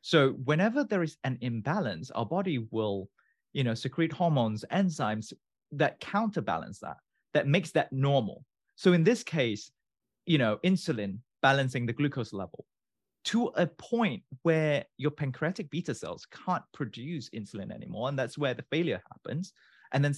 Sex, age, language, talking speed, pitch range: male, 30-49, English, 155 wpm, 120-160 Hz